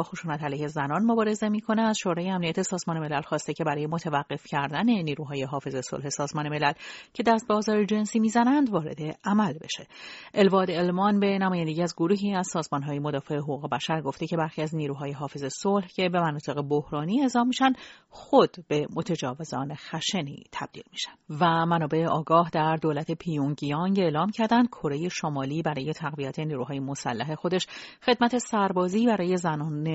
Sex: female